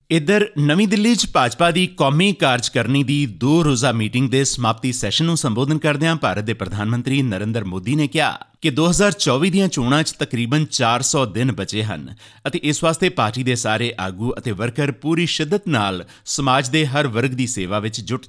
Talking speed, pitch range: 185 wpm, 115-160 Hz